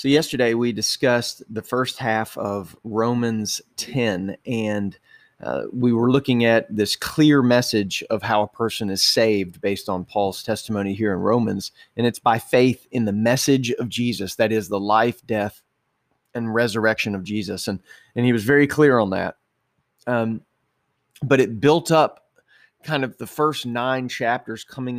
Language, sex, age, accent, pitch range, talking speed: English, male, 30-49, American, 110-130 Hz, 170 wpm